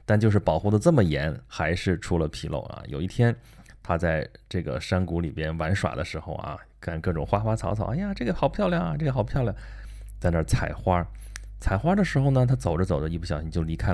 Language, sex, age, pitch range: Chinese, male, 20-39, 85-110 Hz